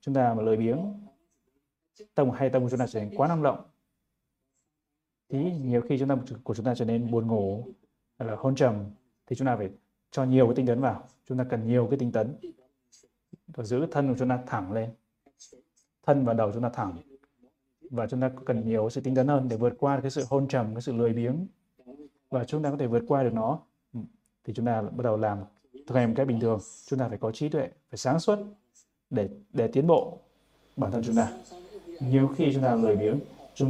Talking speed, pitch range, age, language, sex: 225 wpm, 120-140 Hz, 20-39, Vietnamese, male